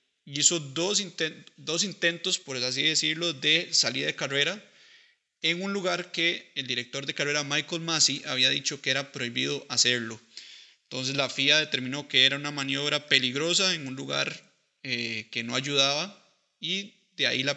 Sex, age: male, 30-49